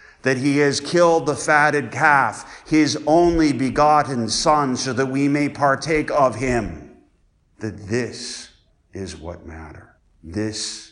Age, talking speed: 50-69, 130 wpm